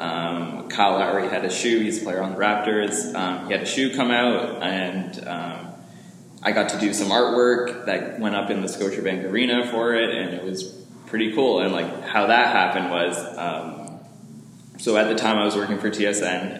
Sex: male